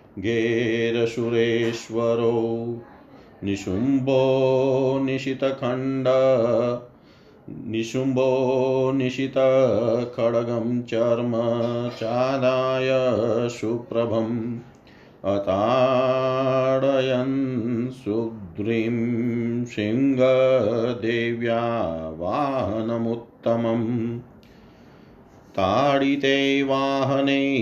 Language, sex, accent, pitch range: Hindi, male, native, 115-135 Hz